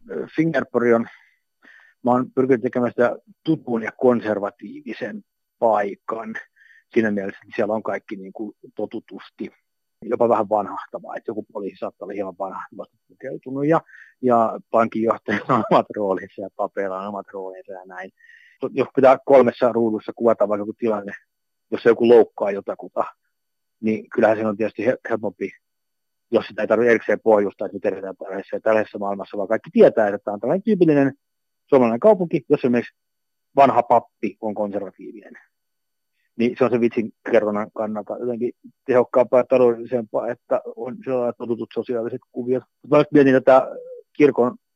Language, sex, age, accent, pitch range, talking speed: Finnish, male, 30-49, native, 110-130 Hz, 140 wpm